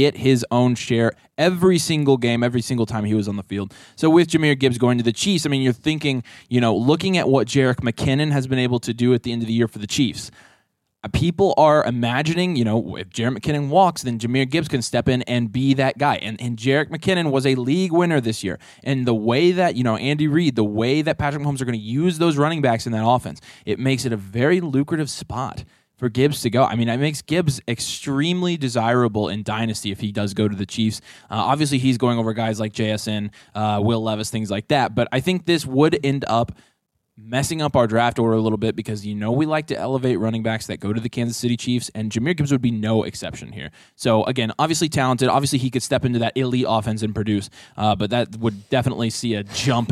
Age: 20-39